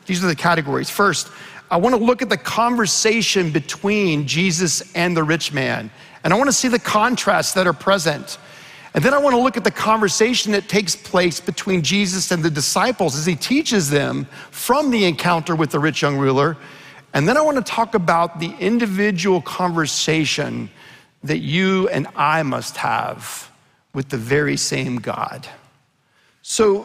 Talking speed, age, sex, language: 175 wpm, 50-69, male, English